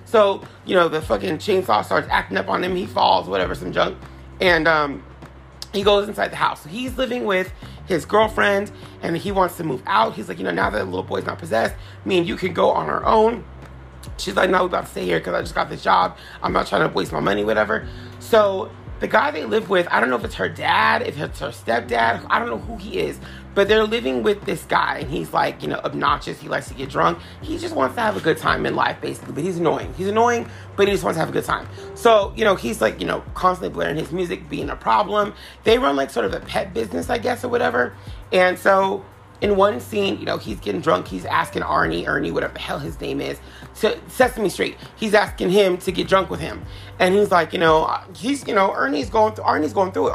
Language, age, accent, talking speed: English, 30-49, American, 255 wpm